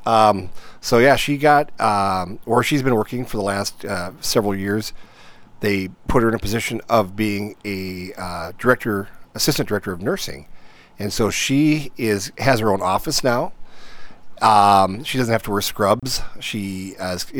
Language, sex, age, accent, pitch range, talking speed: English, male, 40-59, American, 105-155 Hz, 170 wpm